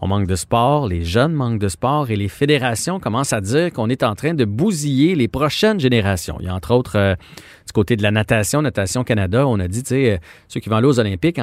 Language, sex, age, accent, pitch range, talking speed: French, male, 40-59, Canadian, 105-140 Hz, 255 wpm